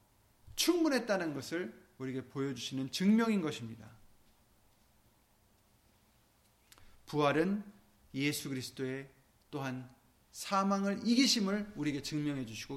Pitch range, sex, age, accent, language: 120-190 Hz, male, 30-49, native, Korean